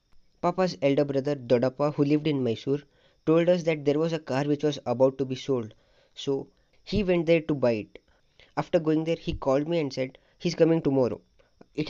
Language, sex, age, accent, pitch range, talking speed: English, female, 20-39, Indian, 130-155 Hz, 200 wpm